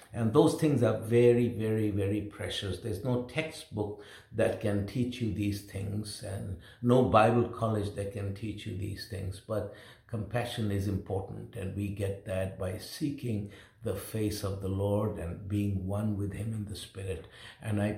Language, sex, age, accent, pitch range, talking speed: English, male, 60-79, Indian, 100-120 Hz, 175 wpm